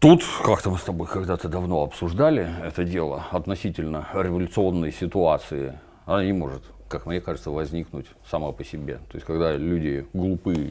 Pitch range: 75-90 Hz